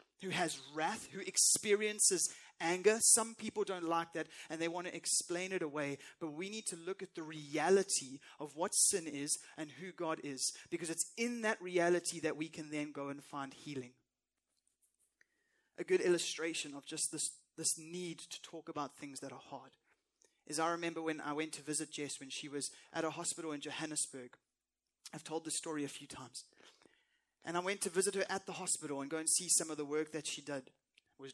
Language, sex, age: English, male, 20-39